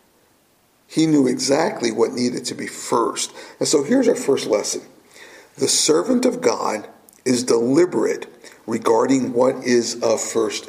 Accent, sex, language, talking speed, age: American, male, English, 140 wpm, 50-69